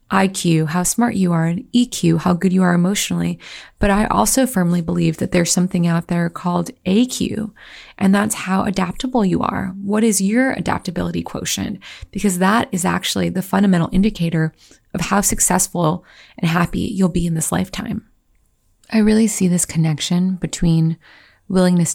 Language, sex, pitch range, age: English, female, 170-195 Hz, 20-39